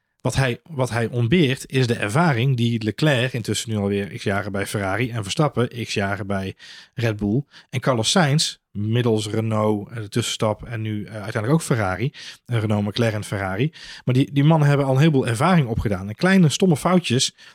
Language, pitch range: Dutch, 110-145 Hz